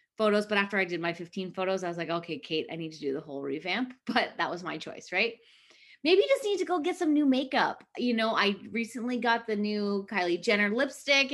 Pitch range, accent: 195-260 Hz, American